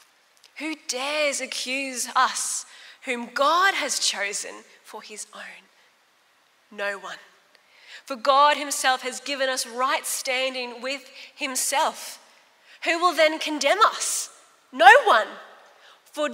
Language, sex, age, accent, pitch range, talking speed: English, female, 10-29, Australian, 235-285 Hz, 115 wpm